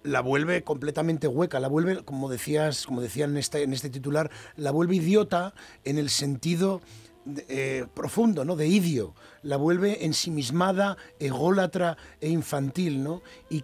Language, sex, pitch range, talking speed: Spanish, male, 150-190 Hz, 150 wpm